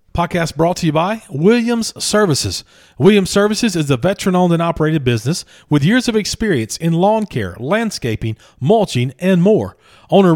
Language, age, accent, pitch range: English, 40-59, American, 130-190 Hz